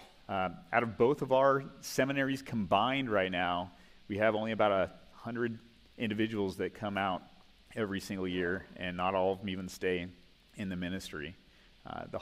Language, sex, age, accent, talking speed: English, male, 30-49, American, 170 wpm